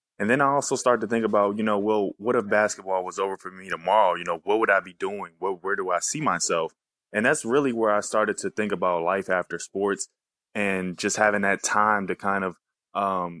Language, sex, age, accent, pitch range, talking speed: English, male, 20-39, American, 90-105 Hz, 235 wpm